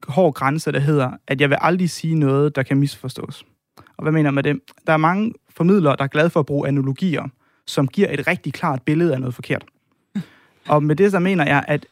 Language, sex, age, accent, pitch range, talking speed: Danish, male, 30-49, native, 135-175 Hz, 225 wpm